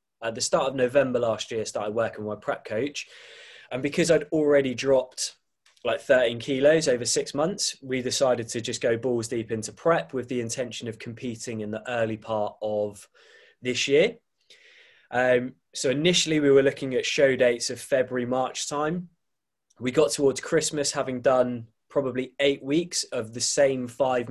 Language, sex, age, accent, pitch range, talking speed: English, male, 20-39, British, 120-145 Hz, 180 wpm